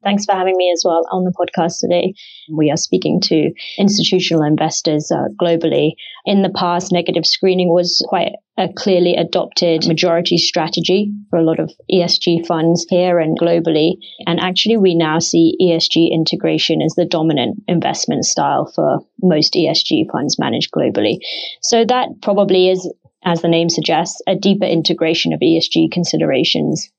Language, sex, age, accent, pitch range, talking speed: English, female, 20-39, British, 165-190 Hz, 160 wpm